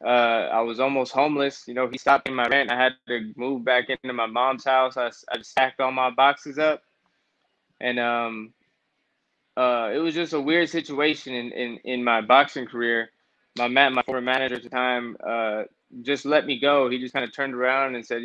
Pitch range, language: 125-140 Hz, English